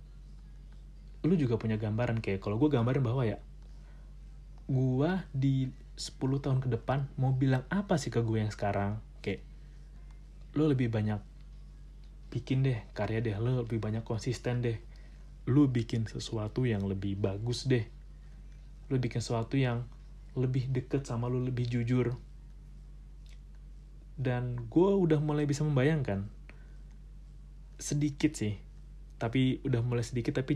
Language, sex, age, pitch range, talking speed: Indonesian, male, 30-49, 110-135 Hz, 130 wpm